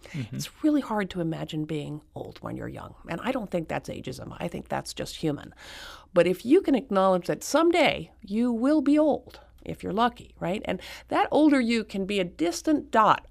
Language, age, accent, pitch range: English, 50-69, American, 170-225 Hz